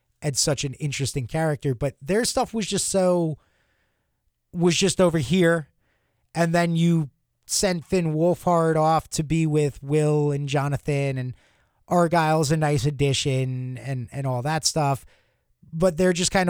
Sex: male